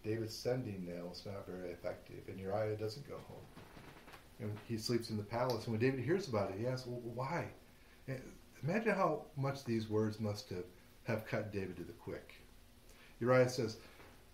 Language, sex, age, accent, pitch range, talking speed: English, male, 40-59, American, 90-120 Hz, 180 wpm